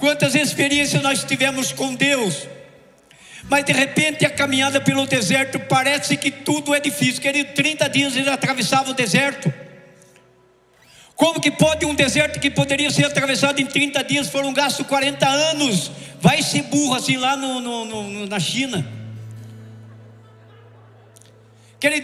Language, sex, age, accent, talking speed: Portuguese, male, 50-69, Brazilian, 145 wpm